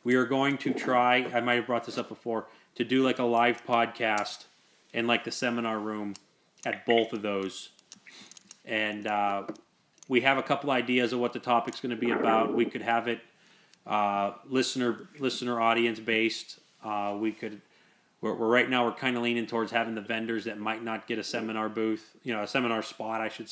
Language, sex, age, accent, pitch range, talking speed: English, male, 30-49, American, 110-125 Hz, 205 wpm